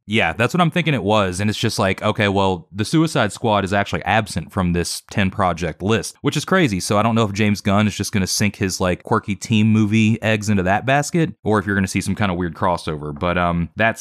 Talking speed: 265 wpm